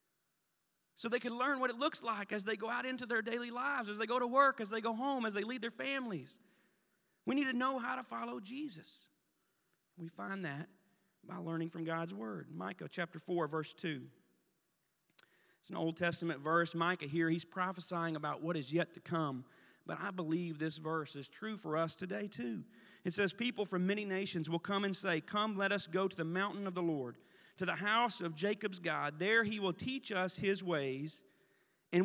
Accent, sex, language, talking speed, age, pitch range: American, male, English, 210 wpm, 40-59, 175-220 Hz